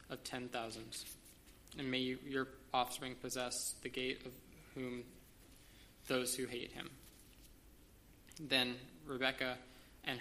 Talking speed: 110 wpm